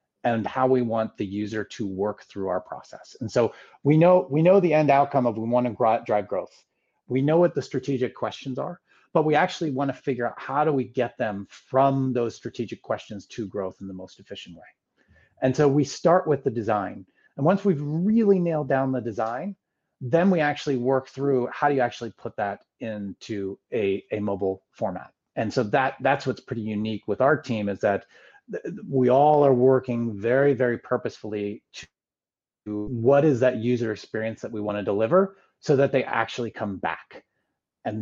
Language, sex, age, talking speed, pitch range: English, male, 30-49, 195 wpm, 115-155 Hz